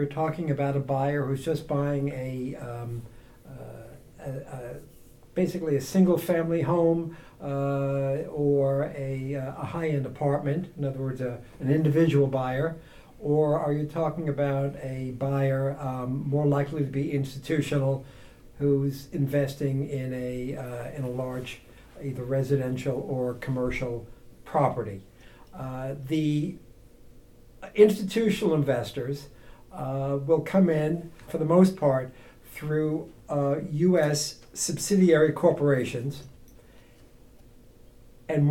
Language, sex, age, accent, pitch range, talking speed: English, male, 60-79, American, 135-165 Hz, 115 wpm